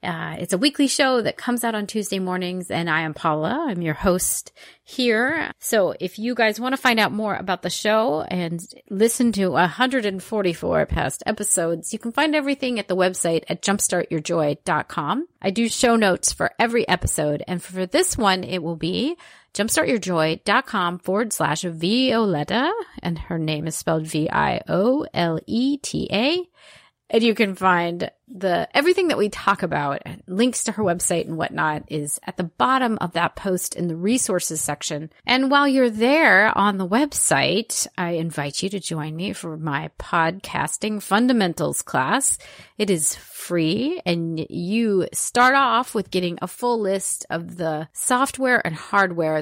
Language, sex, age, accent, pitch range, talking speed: English, female, 30-49, American, 170-235 Hz, 160 wpm